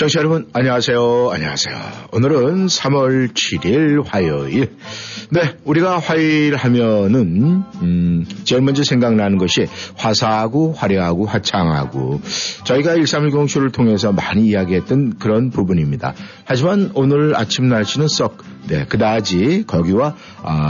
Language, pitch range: Korean, 95-140 Hz